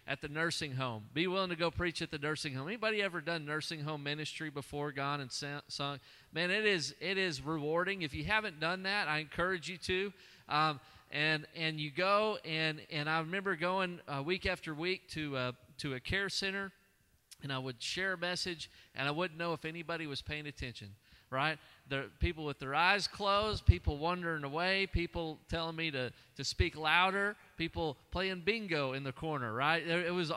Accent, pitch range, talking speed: American, 145-180 Hz, 195 wpm